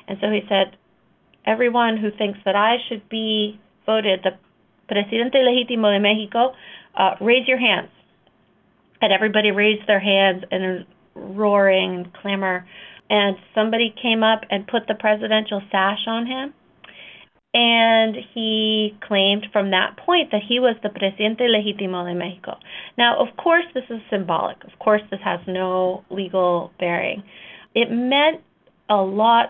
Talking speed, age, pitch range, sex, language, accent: 145 wpm, 30-49, 185-220 Hz, female, English, American